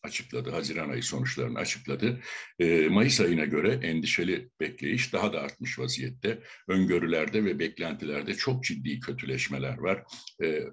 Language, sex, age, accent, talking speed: Turkish, male, 60-79, native, 130 wpm